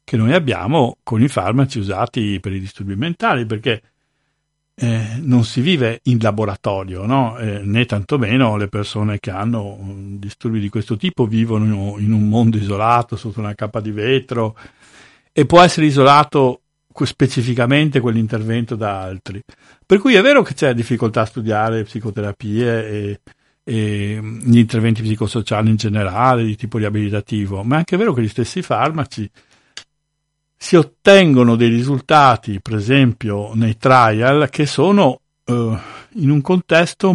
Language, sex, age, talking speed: Italian, male, 60-79, 140 wpm